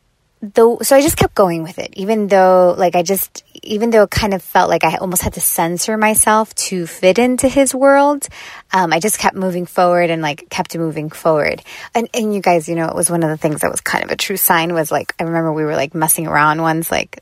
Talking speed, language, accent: 250 wpm, English, American